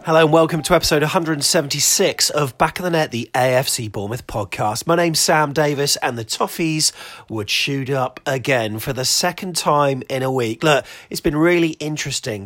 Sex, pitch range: male, 115-160 Hz